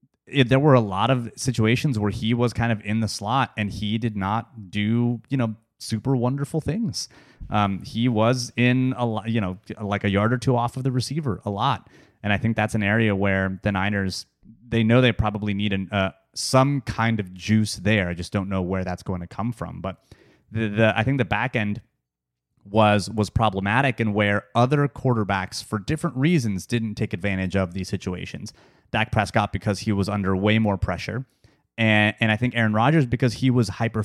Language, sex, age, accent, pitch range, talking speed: English, male, 30-49, American, 100-125 Hz, 205 wpm